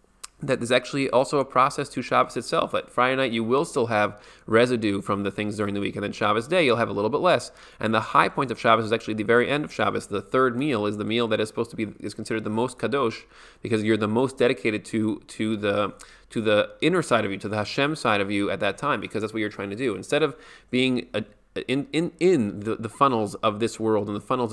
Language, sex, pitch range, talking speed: English, male, 105-125 Hz, 265 wpm